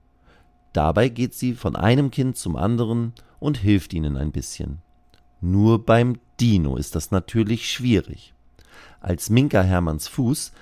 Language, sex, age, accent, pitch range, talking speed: German, male, 40-59, German, 80-115 Hz, 135 wpm